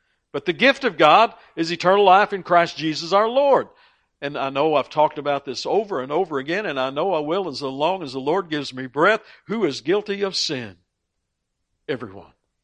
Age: 60-79